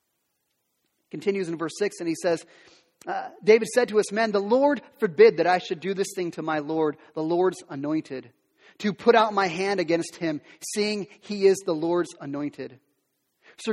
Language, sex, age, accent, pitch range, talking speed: English, male, 30-49, American, 165-230 Hz, 185 wpm